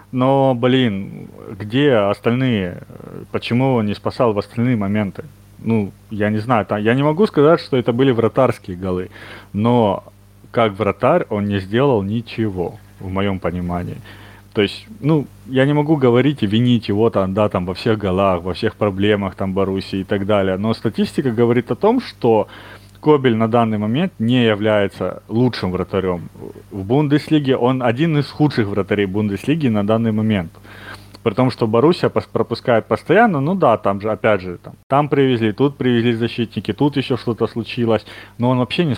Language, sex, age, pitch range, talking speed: Russian, male, 30-49, 105-130 Hz, 170 wpm